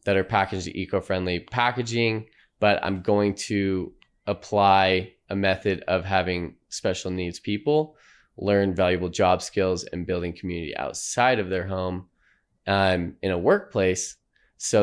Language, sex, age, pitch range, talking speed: English, male, 20-39, 90-110 Hz, 135 wpm